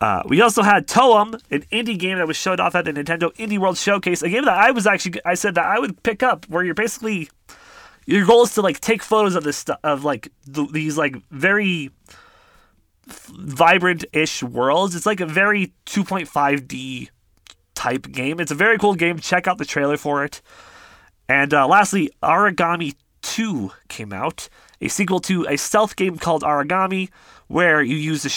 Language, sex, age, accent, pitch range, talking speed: English, male, 20-39, American, 145-200 Hz, 185 wpm